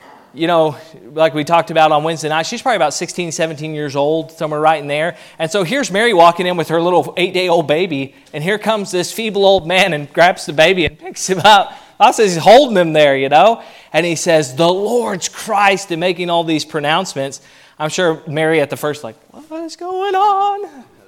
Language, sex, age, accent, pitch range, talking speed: English, male, 30-49, American, 145-185 Hz, 220 wpm